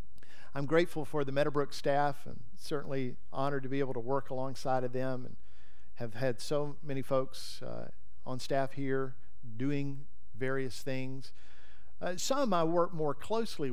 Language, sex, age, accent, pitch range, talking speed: English, male, 50-69, American, 125-170 Hz, 155 wpm